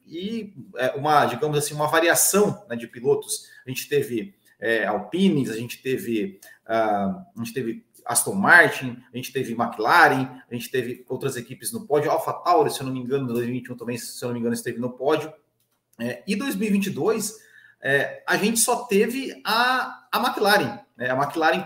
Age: 30-49